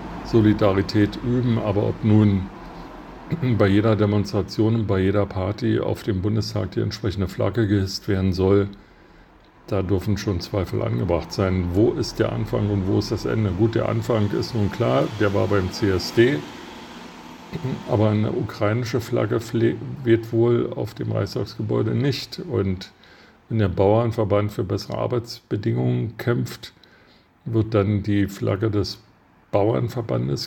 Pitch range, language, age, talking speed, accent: 100-115 Hz, German, 50-69, 135 wpm, German